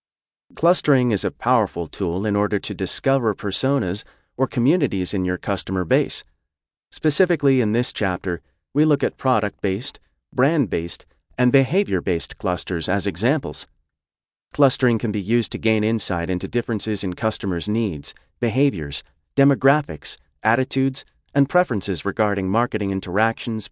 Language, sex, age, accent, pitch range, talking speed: English, male, 40-59, American, 95-130 Hz, 125 wpm